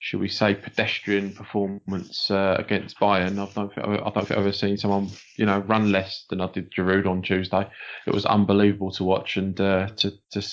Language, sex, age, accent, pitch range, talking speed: English, male, 20-39, British, 95-105 Hz, 210 wpm